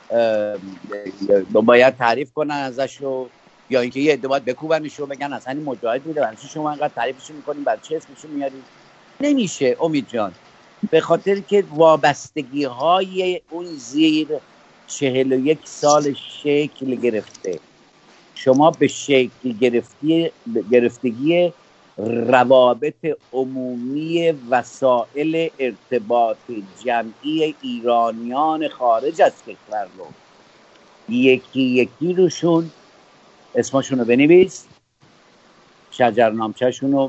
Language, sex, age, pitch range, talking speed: Persian, male, 50-69, 125-155 Hz, 100 wpm